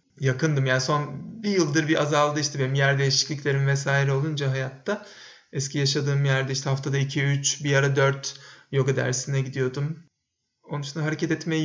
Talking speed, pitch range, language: 160 wpm, 140-175 Hz, Turkish